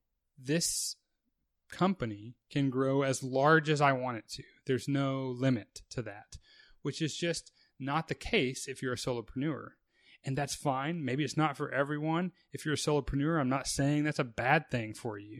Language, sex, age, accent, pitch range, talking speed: English, male, 30-49, American, 120-145 Hz, 185 wpm